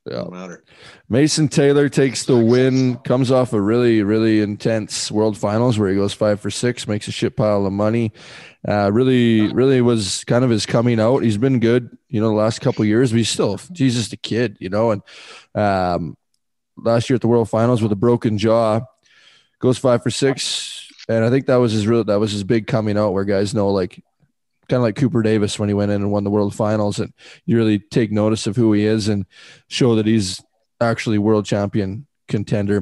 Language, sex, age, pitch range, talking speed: English, male, 20-39, 105-125 Hz, 215 wpm